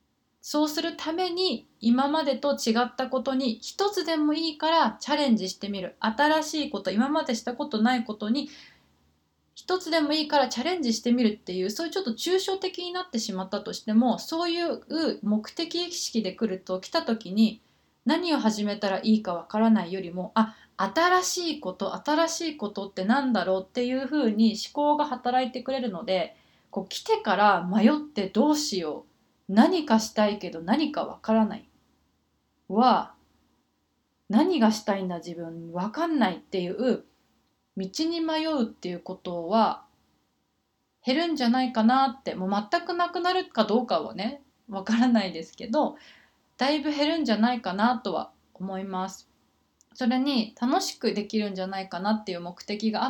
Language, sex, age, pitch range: Japanese, female, 20-39, 205-300 Hz